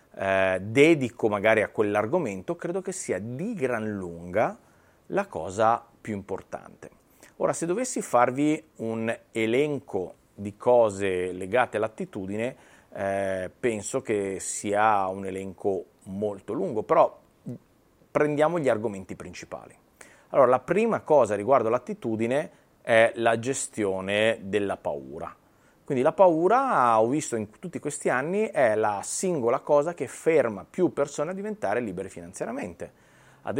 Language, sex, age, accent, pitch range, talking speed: Italian, male, 30-49, native, 105-145 Hz, 125 wpm